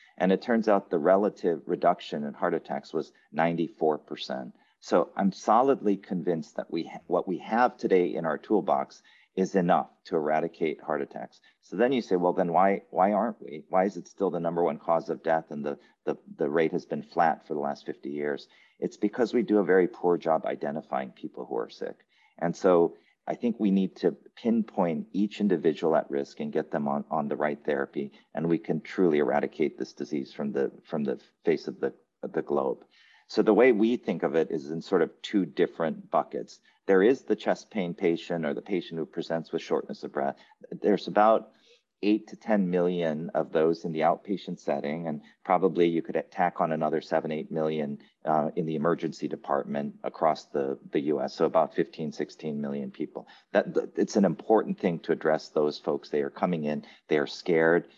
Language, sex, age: English, male, 40-59